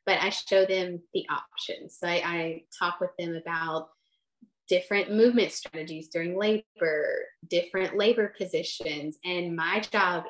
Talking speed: 140 wpm